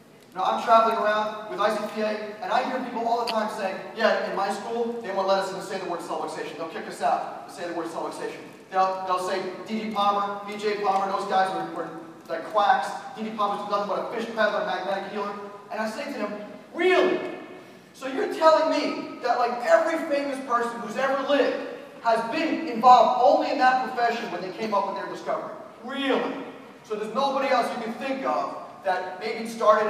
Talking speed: 210 wpm